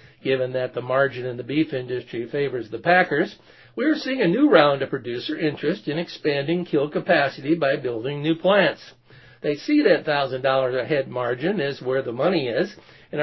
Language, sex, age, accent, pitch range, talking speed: English, male, 60-79, American, 130-165 Hz, 175 wpm